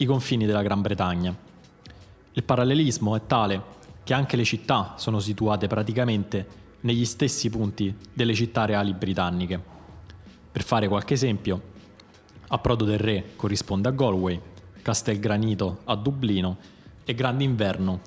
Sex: male